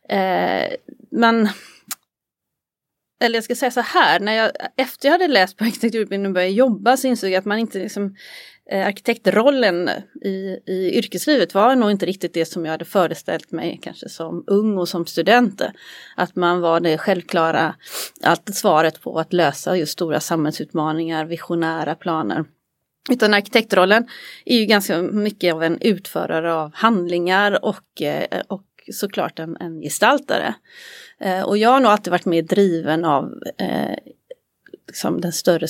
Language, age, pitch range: Swedish, 30-49, 170-210 Hz